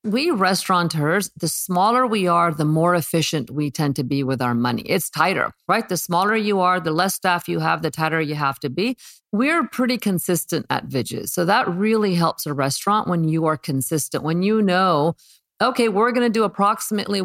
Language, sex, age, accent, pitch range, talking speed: English, female, 50-69, American, 160-205 Hz, 200 wpm